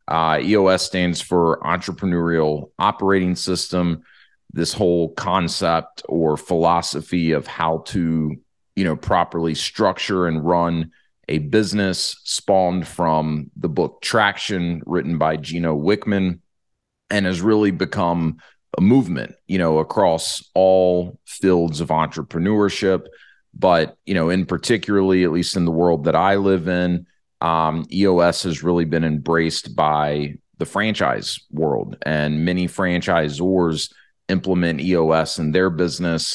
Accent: American